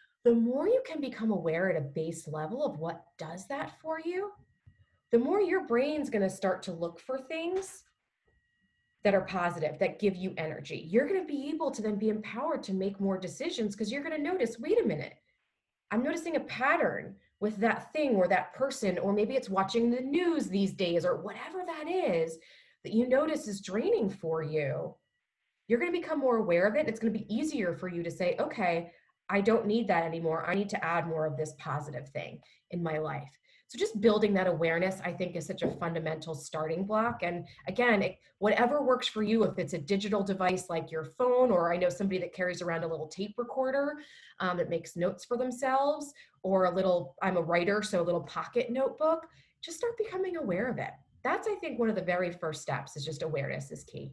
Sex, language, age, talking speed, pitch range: female, English, 20-39, 215 wpm, 170-260 Hz